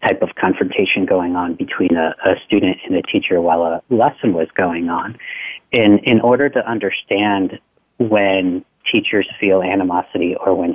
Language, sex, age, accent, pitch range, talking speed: English, male, 40-59, American, 95-120 Hz, 160 wpm